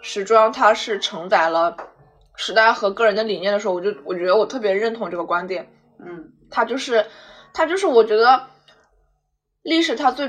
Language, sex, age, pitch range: Chinese, female, 20-39, 190-240 Hz